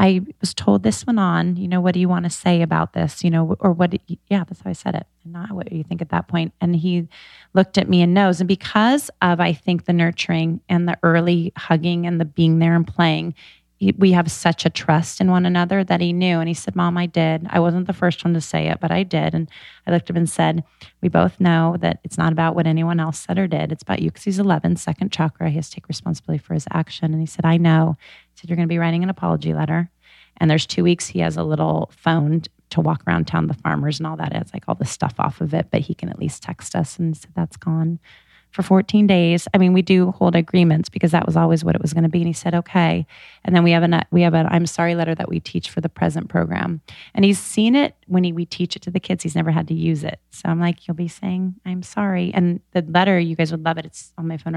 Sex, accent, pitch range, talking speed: female, American, 160-180 Hz, 275 wpm